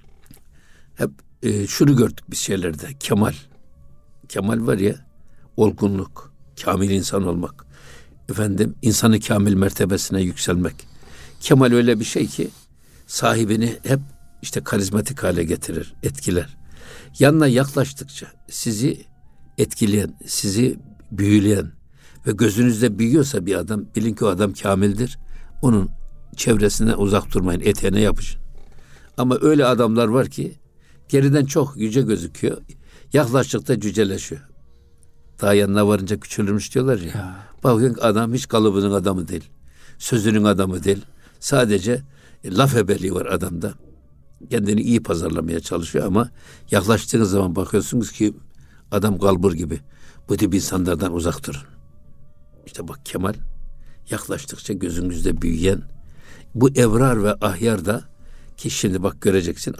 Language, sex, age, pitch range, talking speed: Turkish, male, 60-79, 85-115 Hz, 115 wpm